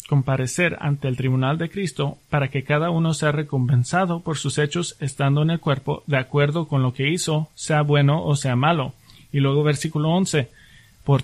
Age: 30-49